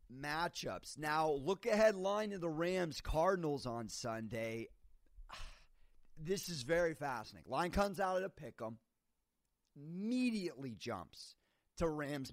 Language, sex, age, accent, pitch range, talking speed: English, male, 30-49, American, 130-185 Hz, 120 wpm